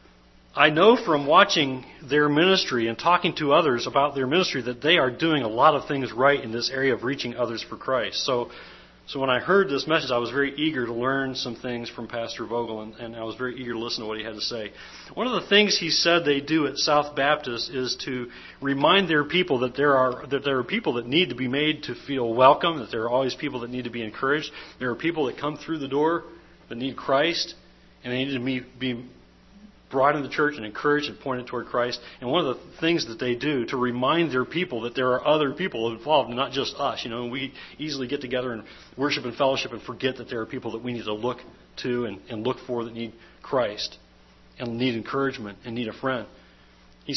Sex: male